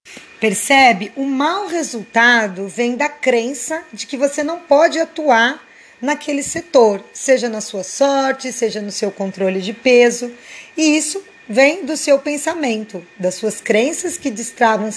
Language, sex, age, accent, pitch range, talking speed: Portuguese, female, 20-39, Brazilian, 230-310 Hz, 145 wpm